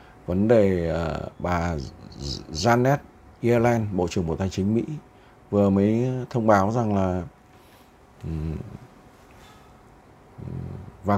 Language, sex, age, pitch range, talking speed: Vietnamese, male, 60-79, 80-110 Hz, 95 wpm